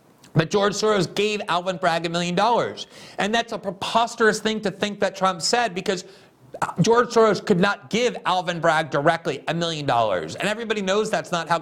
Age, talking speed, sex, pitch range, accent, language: 40-59, 190 wpm, male, 155-210 Hz, American, English